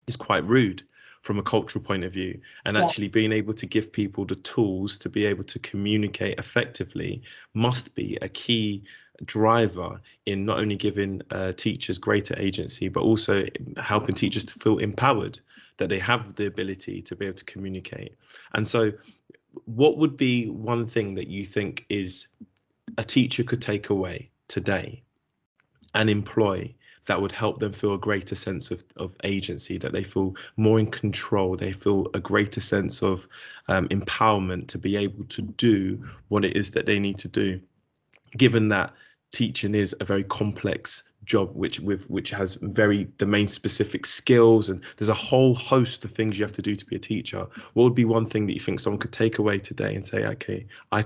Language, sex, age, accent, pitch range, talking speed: English, male, 20-39, British, 95-110 Hz, 185 wpm